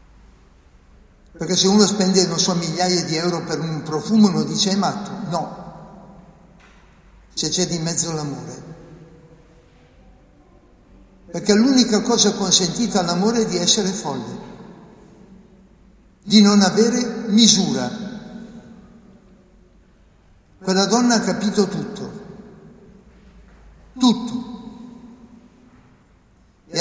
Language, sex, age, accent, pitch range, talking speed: Italian, male, 60-79, native, 165-210 Hz, 95 wpm